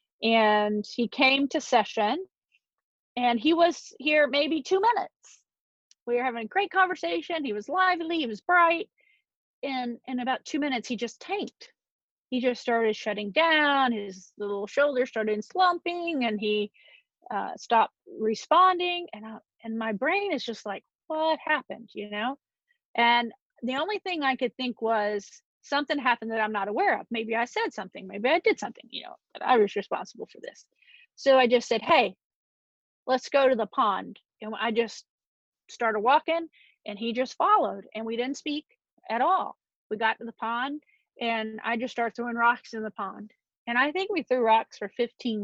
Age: 40-59